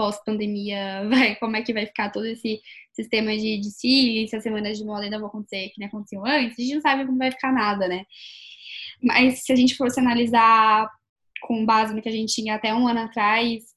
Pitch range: 215-240 Hz